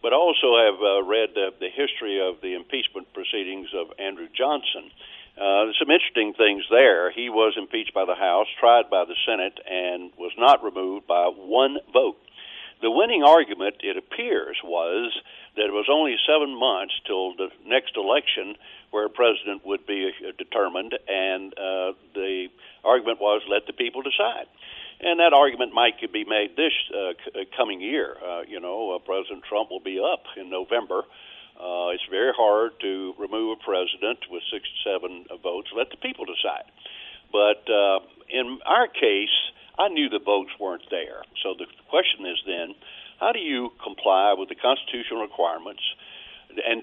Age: 60-79